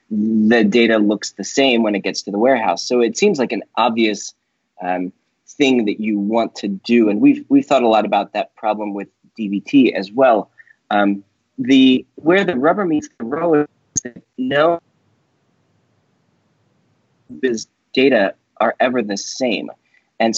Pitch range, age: 110-150 Hz, 30-49